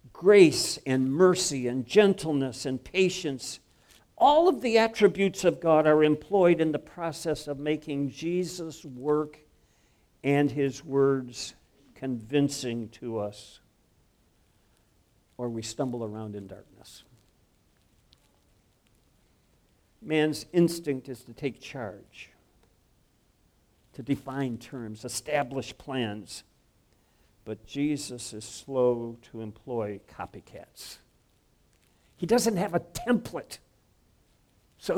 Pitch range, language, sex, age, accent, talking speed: 125-185 Hz, English, male, 60-79, American, 100 wpm